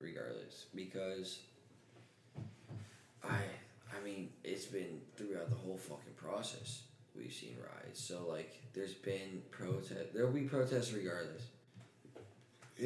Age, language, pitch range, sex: 20-39, English, 100-125 Hz, male